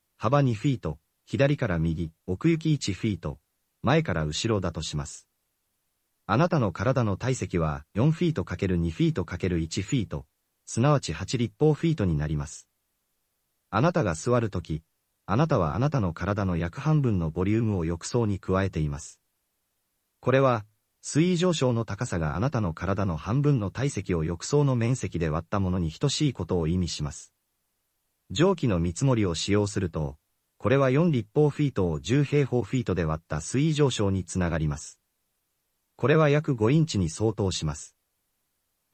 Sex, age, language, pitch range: male, 40-59, Japanese, 85-135 Hz